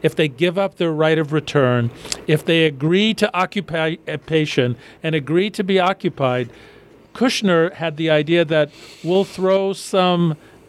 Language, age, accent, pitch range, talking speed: English, 50-69, American, 150-185 Hz, 145 wpm